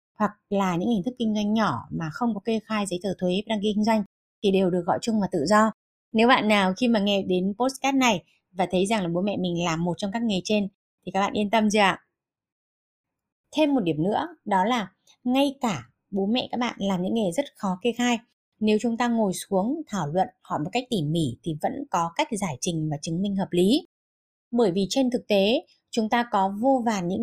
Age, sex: 20-39, female